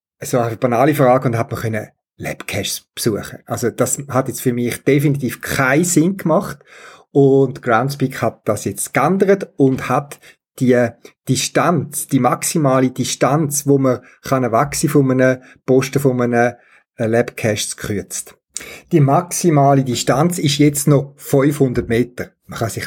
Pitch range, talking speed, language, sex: 120-160 Hz, 140 wpm, German, male